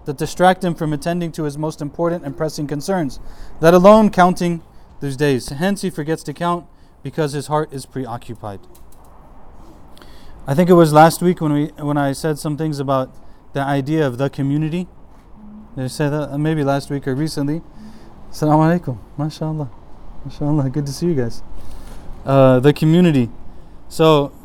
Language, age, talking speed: English, 20-39, 165 wpm